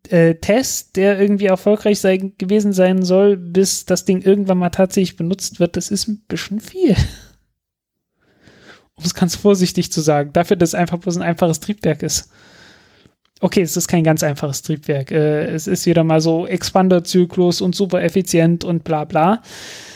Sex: male